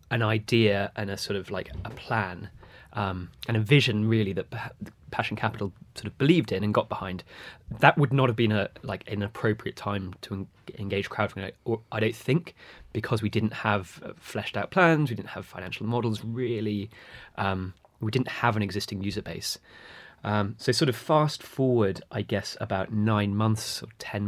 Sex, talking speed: male, 190 wpm